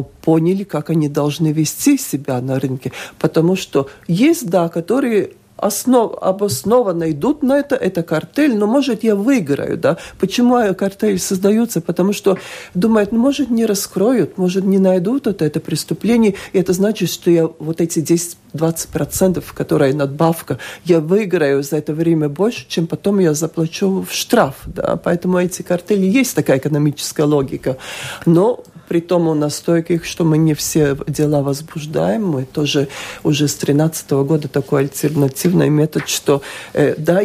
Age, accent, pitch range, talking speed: 40-59, native, 155-190 Hz, 150 wpm